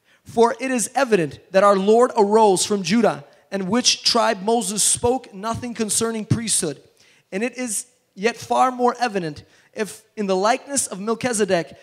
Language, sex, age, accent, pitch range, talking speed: English, male, 20-39, American, 200-240 Hz, 155 wpm